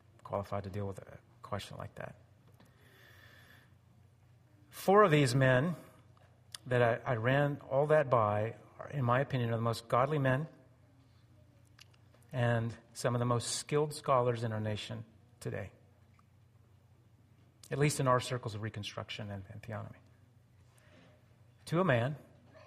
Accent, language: American, English